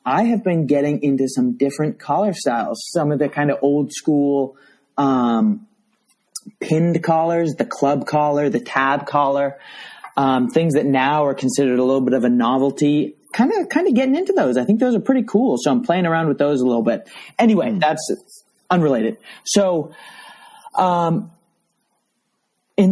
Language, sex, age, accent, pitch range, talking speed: English, male, 30-49, American, 135-200 Hz, 170 wpm